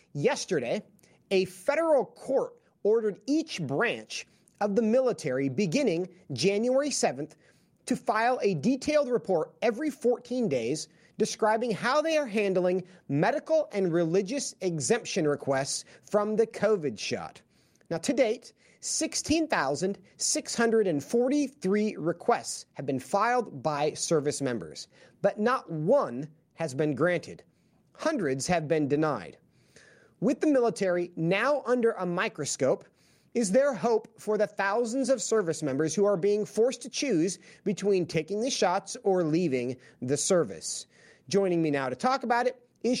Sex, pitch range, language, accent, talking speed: male, 170-245 Hz, English, American, 130 wpm